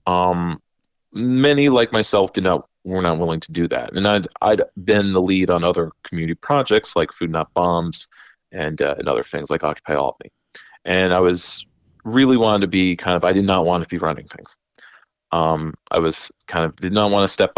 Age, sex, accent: 30-49, male, American